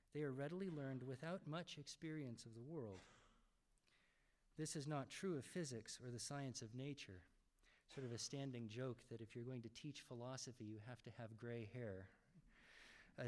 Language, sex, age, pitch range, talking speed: English, male, 50-69, 120-145 Hz, 180 wpm